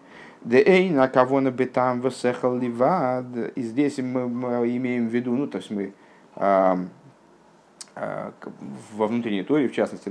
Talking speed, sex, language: 140 wpm, male, Russian